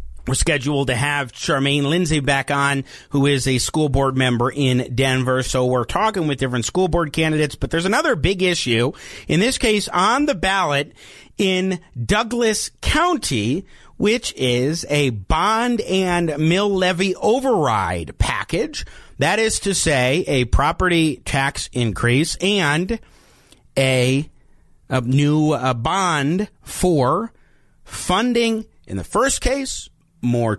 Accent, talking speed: American, 135 wpm